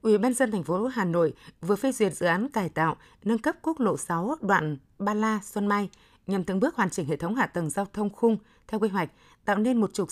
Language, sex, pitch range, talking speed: Vietnamese, female, 180-225 Hz, 255 wpm